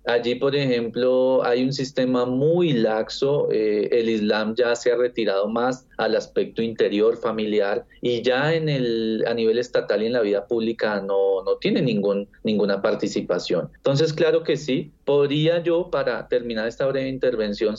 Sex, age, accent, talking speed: male, 30-49, Colombian, 155 wpm